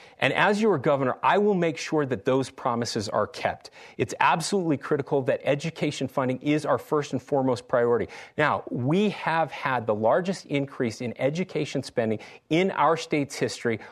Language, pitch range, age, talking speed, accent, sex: English, 130-165 Hz, 40-59, 170 wpm, American, male